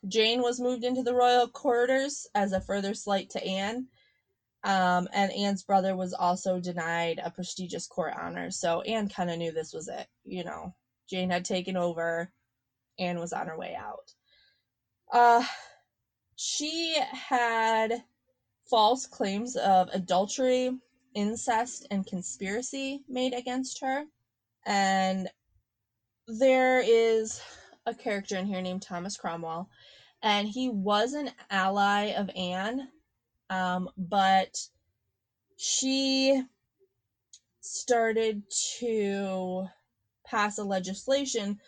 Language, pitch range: English, 180-235 Hz